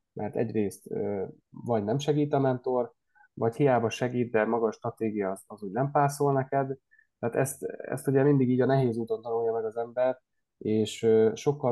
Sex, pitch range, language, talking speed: male, 110-135 Hz, Hungarian, 180 wpm